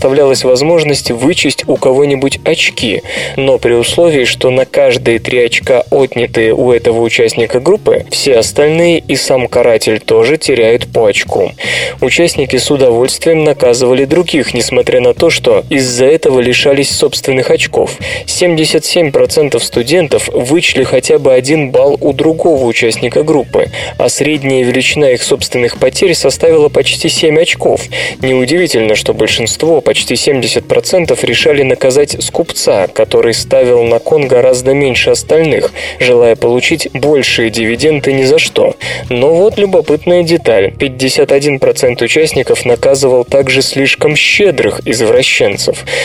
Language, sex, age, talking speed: Russian, male, 20-39, 125 wpm